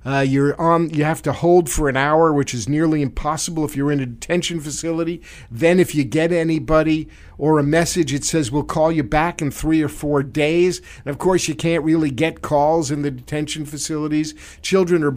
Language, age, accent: English, 50-69, American